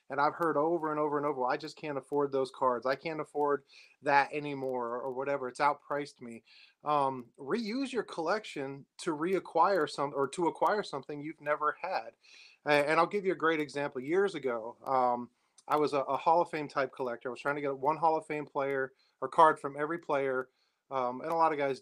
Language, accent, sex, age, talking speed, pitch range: English, American, male, 30-49, 215 wpm, 135-165 Hz